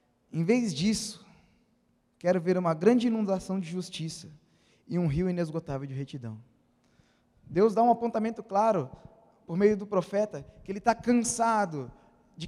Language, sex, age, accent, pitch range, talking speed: Portuguese, male, 20-39, Brazilian, 165-220 Hz, 145 wpm